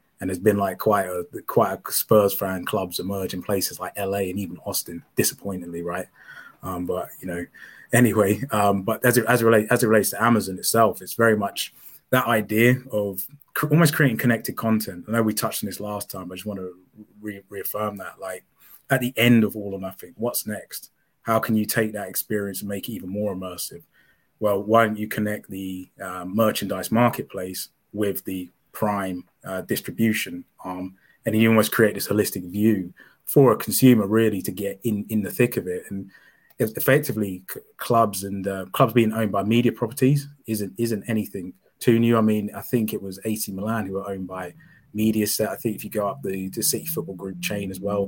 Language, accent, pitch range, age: English, British, 95-115 Hz, 20-39